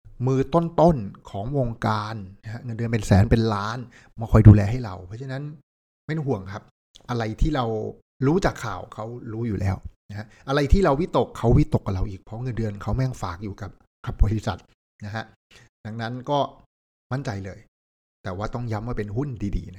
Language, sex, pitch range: Thai, male, 105-130 Hz